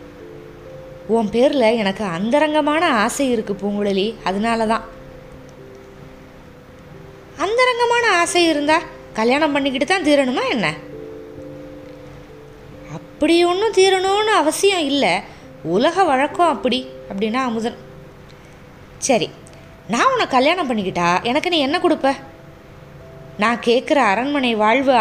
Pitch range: 220-310 Hz